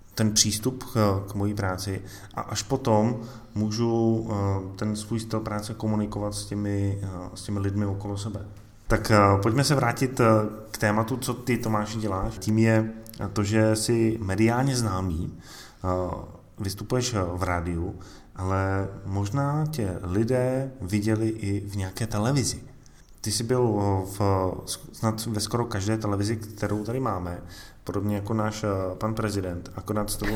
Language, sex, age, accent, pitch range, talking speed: Czech, male, 30-49, native, 100-115 Hz, 140 wpm